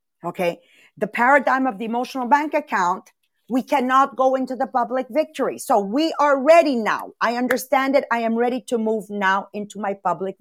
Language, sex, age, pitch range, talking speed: English, female, 40-59, 205-290 Hz, 185 wpm